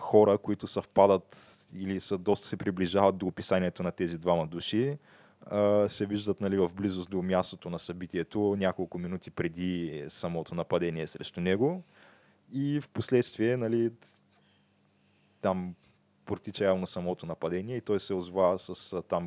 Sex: male